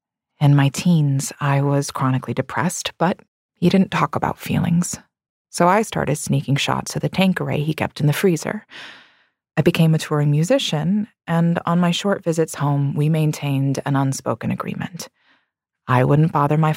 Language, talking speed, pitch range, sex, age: English, 170 wpm, 145-180 Hz, female, 30-49